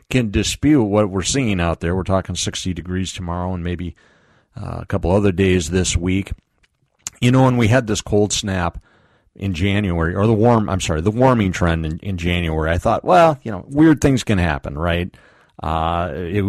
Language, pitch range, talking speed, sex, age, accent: English, 85-115 Hz, 195 wpm, male, 40-59, American